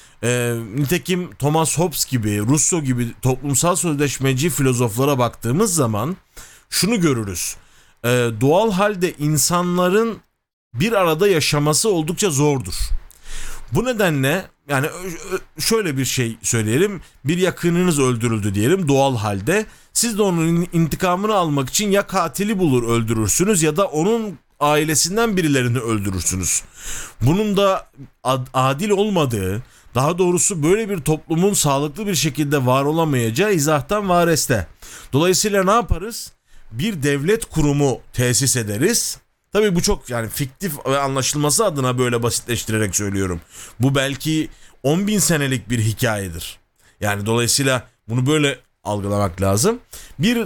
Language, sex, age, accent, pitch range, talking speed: Turkish, male, 40-59, native, 120-180 Hz, 120 wpm